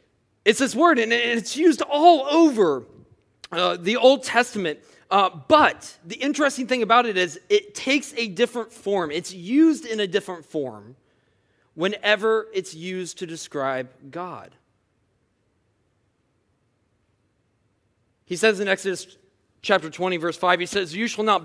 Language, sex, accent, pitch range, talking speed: English, male, American, 140-215 Hz, 140 wpm